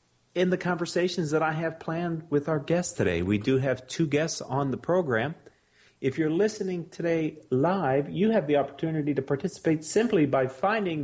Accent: American